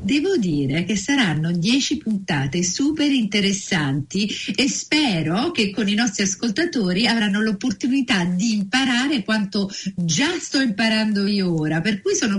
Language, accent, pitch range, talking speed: Italian, native, 180-250 Hz, 135 wpm